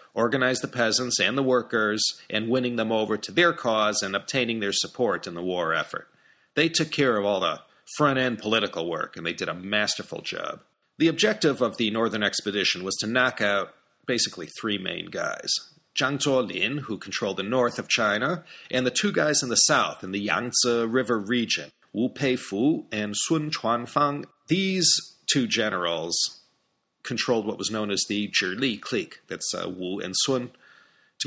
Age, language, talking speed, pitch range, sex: 40-59, English, 175 wpm, 100-135 Hz, male